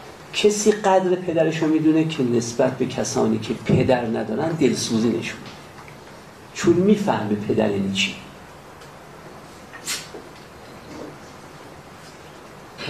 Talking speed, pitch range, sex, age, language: 95 wpm, 115-185 Hz, male, 50-69, Persian